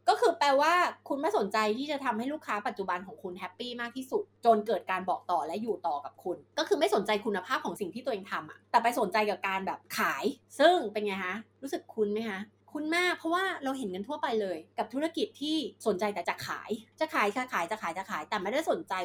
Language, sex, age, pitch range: Thai, female, 20-39, 195-270 Hz